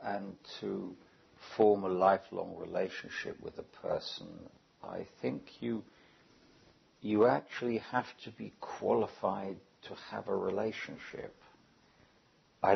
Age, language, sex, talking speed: 60-79, English, male, 110 wpm